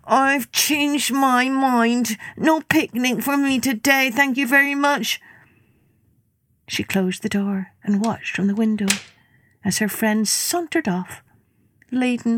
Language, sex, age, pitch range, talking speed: English, female, 60-79, 175-255 Hz, 135 wpm